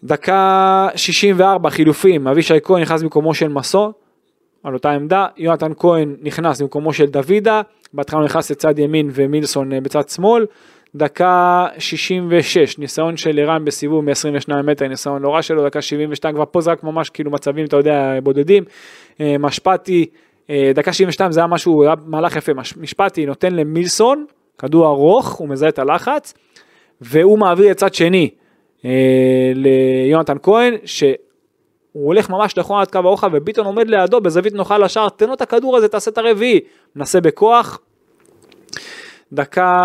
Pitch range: 145-190 Hz